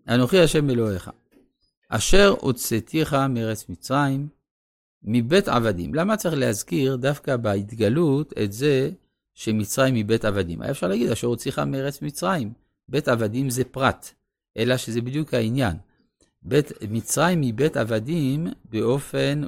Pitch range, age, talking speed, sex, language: 105-150 Hz, 50-69, 125 wpm, male, Hebrew